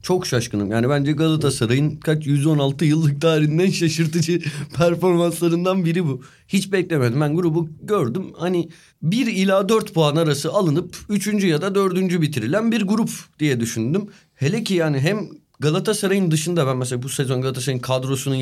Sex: male